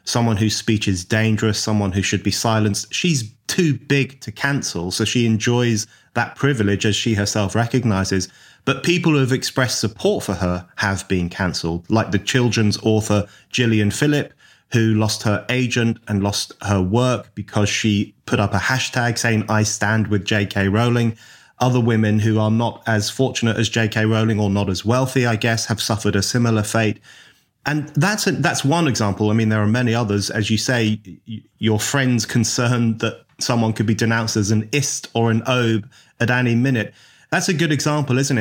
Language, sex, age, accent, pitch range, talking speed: English, male, 30-49, British, 105-125 Hz, 185 wpm